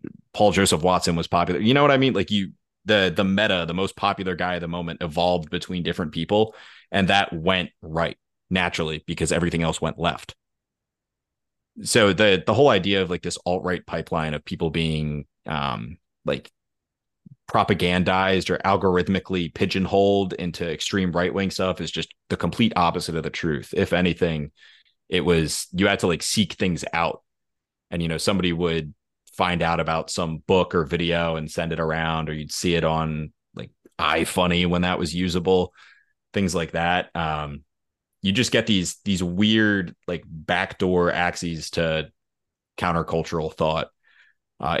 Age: 30-49